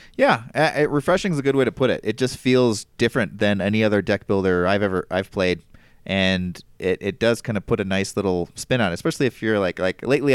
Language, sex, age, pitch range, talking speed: English, male, 30-49, 95-125 Hz, 240 wpm